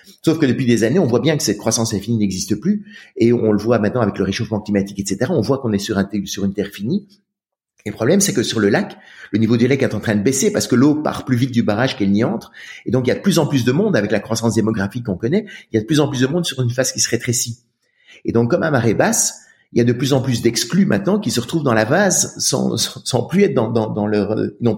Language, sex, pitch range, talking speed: French, male, 105-135 Hz, 300 wpm